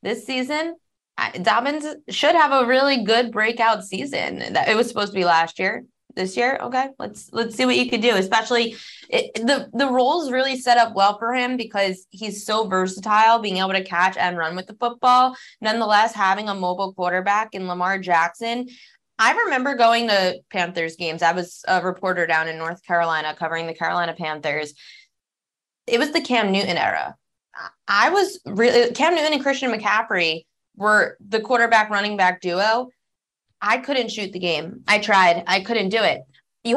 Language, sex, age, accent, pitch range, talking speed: English, female, 20-39, American, 180-240 Hz, 180 wpm